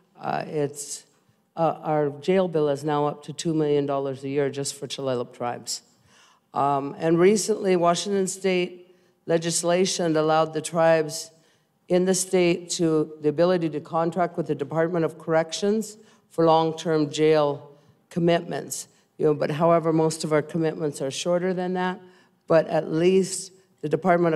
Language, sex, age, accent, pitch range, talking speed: English, female, 50-69, American, 155-175 Hz, 150 wpm